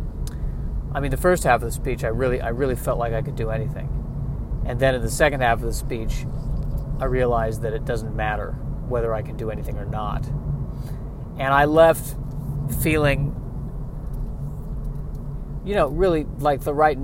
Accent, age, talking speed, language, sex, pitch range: American, 40-59, 175 wpm, English, male, 120-150 Hz